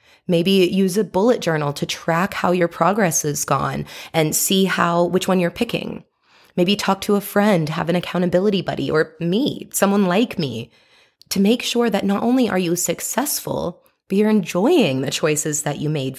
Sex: female